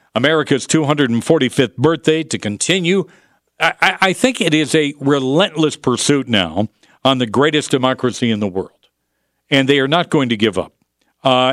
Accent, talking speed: American, 160 wpm